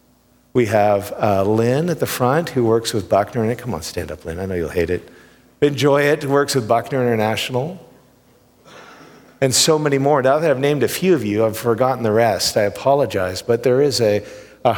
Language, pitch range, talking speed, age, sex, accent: English, 100-130 Hz, 205 wpm, 50-69, male, American